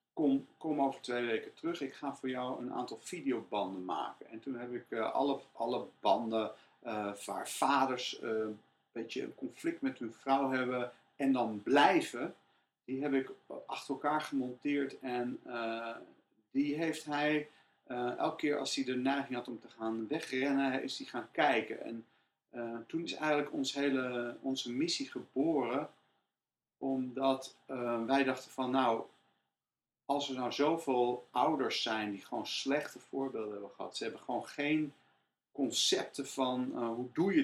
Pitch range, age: 120-145 Hz, 40-59